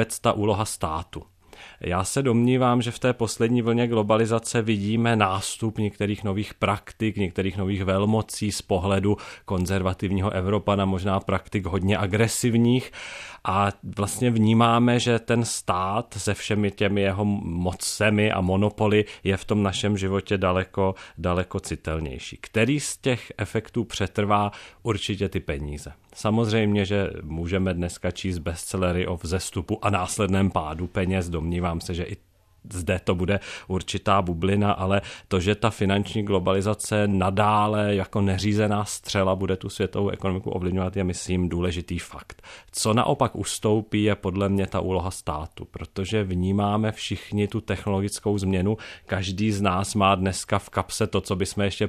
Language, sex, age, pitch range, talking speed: Czech, male, 40-59, 95-105 Hz, 145 wpm